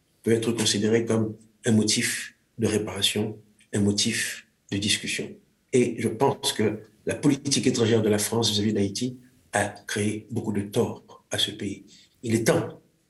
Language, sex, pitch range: French, male, 110-140 Hz